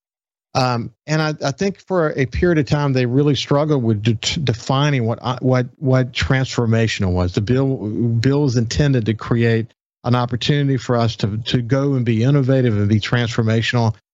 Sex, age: male, 50-69